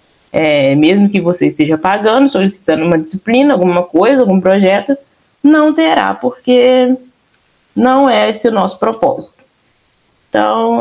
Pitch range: 150-245 Hz